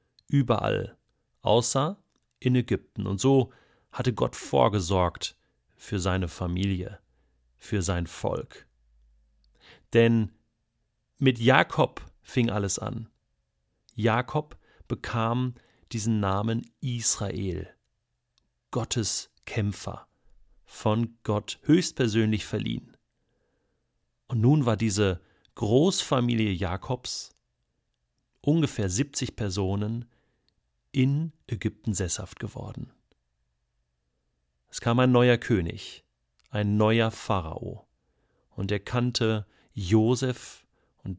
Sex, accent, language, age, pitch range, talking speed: male, German, German, 40-59, 90-120 Hz, 85 wpm